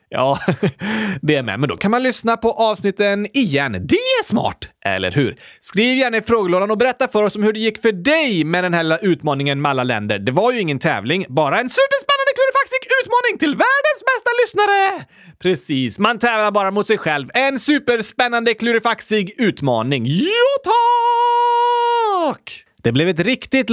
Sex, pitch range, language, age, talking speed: male, 155-260 Hz, Swedish, 30-49, 170 wpm